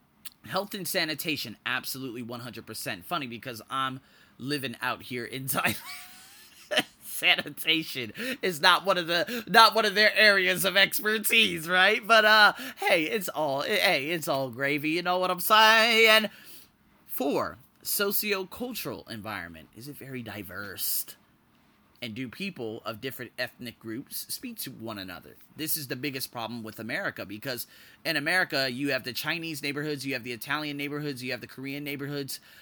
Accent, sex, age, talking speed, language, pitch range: American, male, 30-49, 155 wpm, English, 125-180 Hz